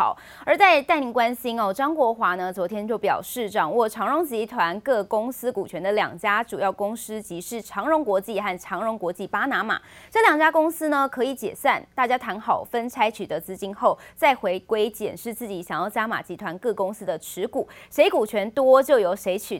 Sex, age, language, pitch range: female, 20-39, Chinese, 195-270 Hz